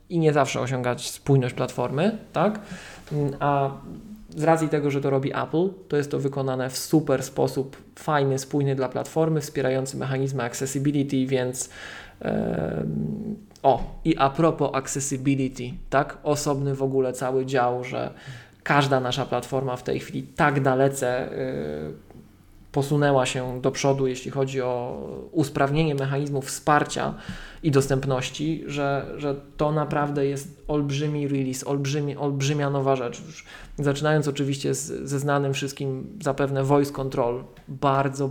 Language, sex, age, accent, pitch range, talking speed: Polish, male, 20-39, native, 130-145 Hz, 135 wpm